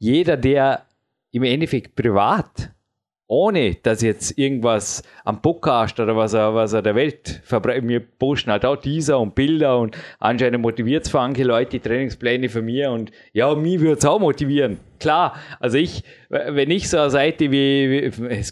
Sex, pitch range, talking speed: male, 110-135 Hz, 180 wpm